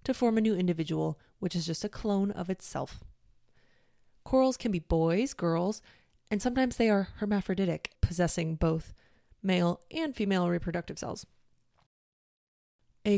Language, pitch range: English, 165-210 Hz